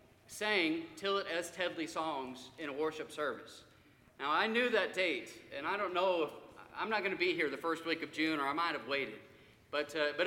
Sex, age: male, 40-59